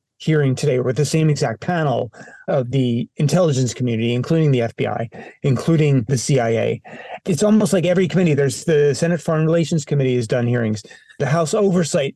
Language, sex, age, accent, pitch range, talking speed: English, male, 30-49, American, 140-170 Hz, 170 wpm